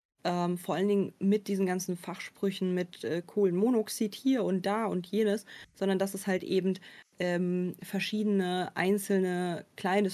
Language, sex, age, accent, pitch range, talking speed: German, female, 20-39, German, 180-200 Hz, 150 wpm